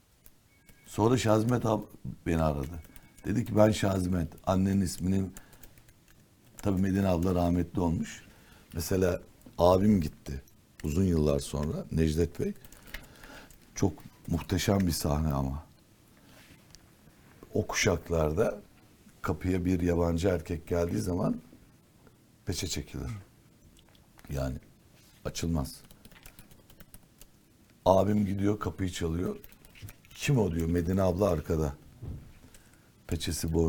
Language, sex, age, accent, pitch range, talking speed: Turkish, male, 60-79, native, 80-100 Hz, 95 wpm